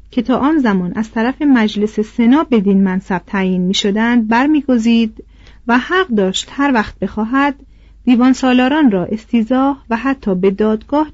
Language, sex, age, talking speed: Persian, female, 40-59, 150 wpm